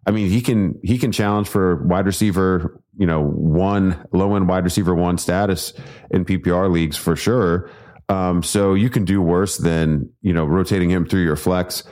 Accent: American